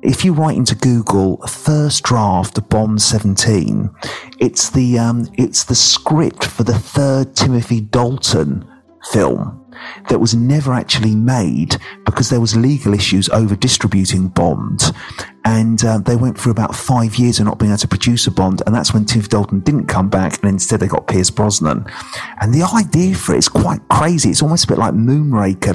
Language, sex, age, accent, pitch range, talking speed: English, male, 40-59, British, 105-130 Hz, 185 wpm